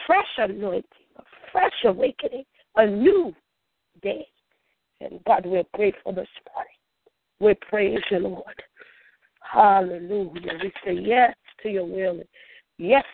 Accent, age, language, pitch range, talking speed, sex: American, 40-59, English, 180-270 Hz, 125 wpm, female